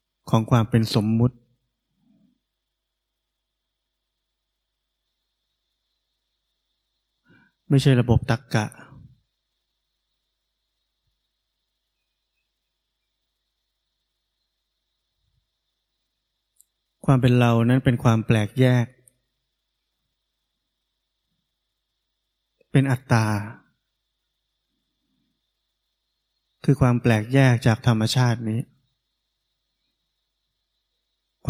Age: 20-39